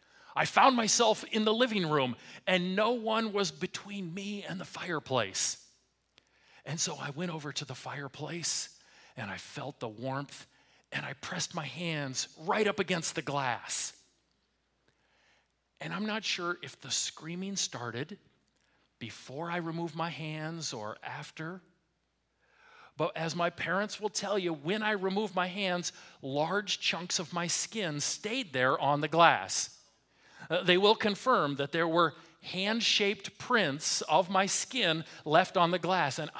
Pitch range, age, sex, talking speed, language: 145-200 Hz, 40-59, male, 150 wpm, English